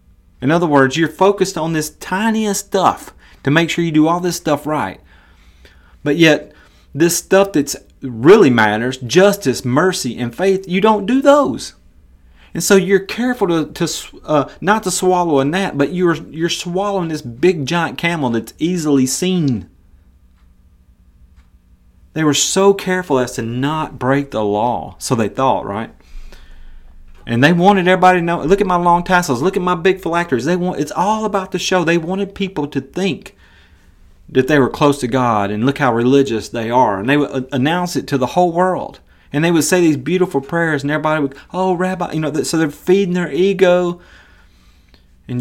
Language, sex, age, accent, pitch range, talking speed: English, male, 30-49, American, 105-180 Hz, 185 wpm